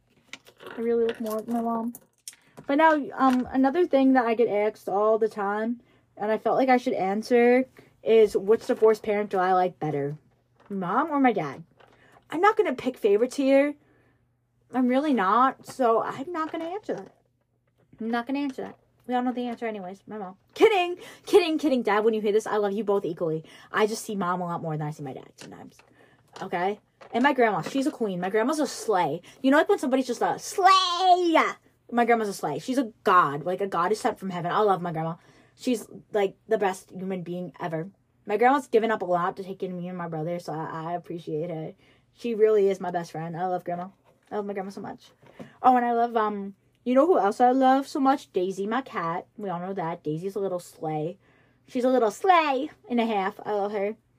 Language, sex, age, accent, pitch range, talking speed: English, female, 20-39, American, 180-255 Hz, 225 wpm